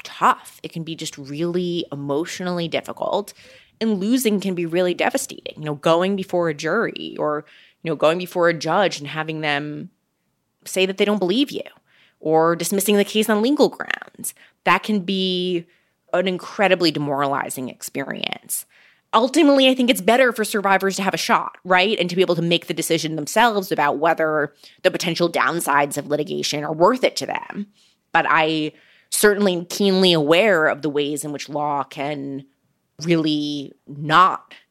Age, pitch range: 20-39, 150-190 Hz